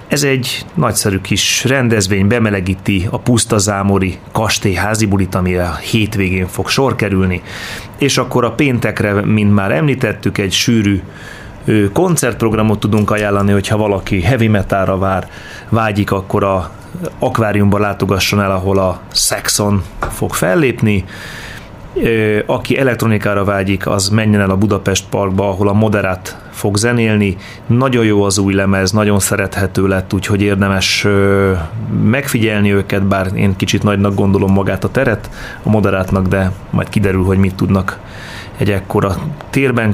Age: 30-49